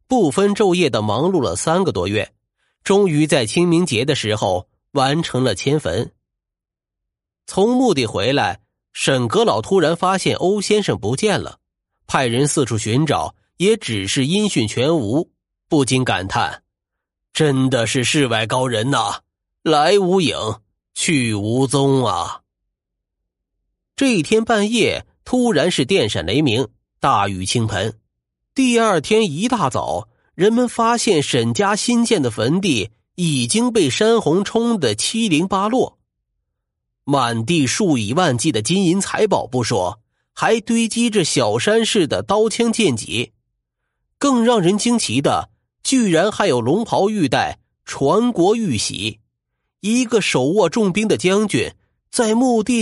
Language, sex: Chinese, male